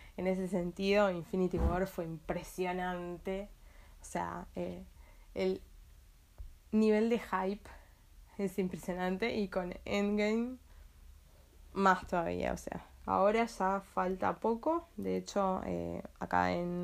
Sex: female